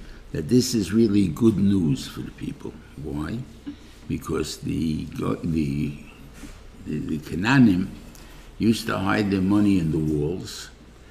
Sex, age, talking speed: male, 60-79, 125 wpm